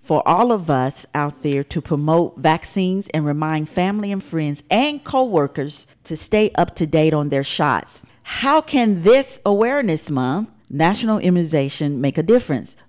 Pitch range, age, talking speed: 150-210 Hz, 40-59, 165 wpm